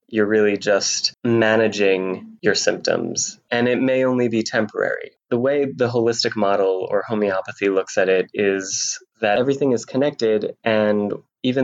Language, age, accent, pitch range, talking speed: English, 20-39, American, 100-120 Hz, 150 wpm